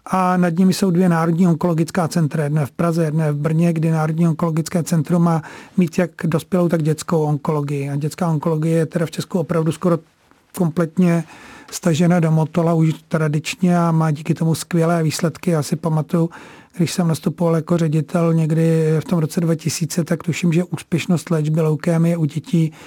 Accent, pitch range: native, 160-185 Hz